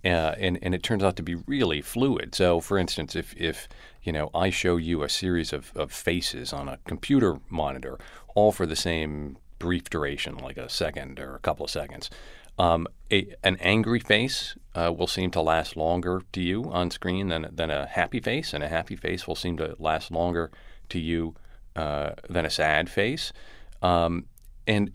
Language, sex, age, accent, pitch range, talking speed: English, male, 40-59, American, 85-100 Hz, 195 wpm